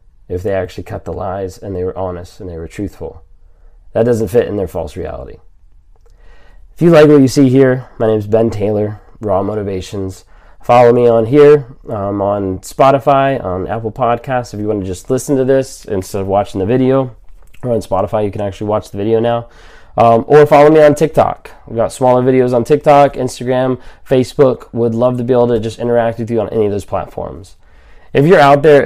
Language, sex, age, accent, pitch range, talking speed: English, male, 20-39, American, 95-130 Hz, 210 wpm